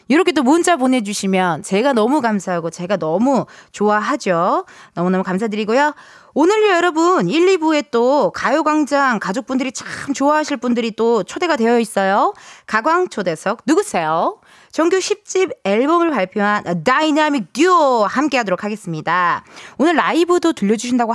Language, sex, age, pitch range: Korean, female, 20-39, 210-330 Hz